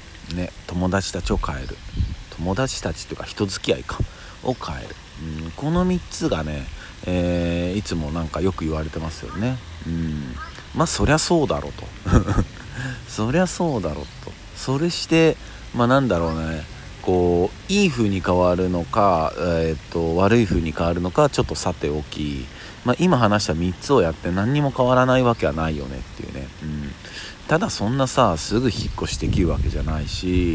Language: Japanese